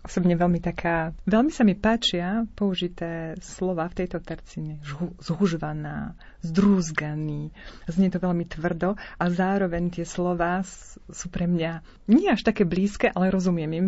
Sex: female